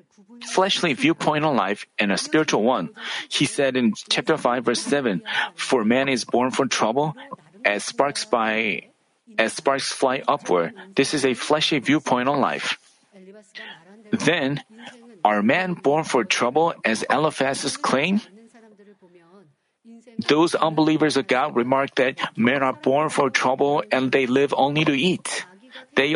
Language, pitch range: Korean, 135-210 Hz